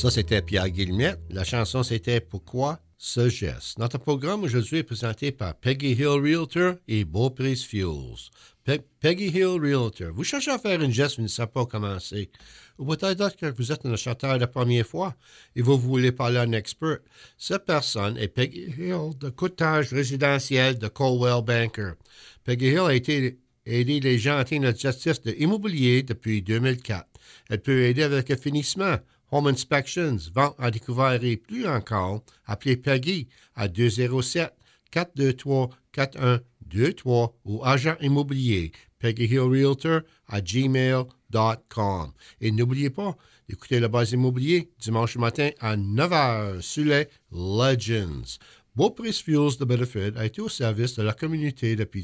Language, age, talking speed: English, 60-79, 150 wpm